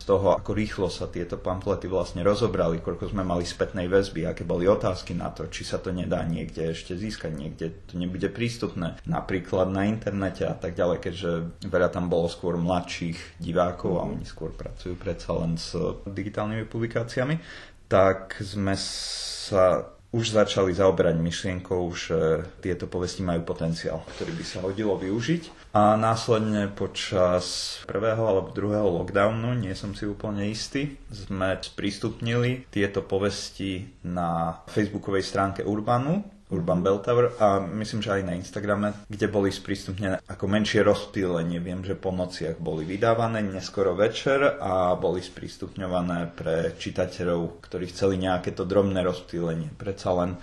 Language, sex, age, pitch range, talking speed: Slovak, male, 30-49, 90-105 Hz, 150 wpm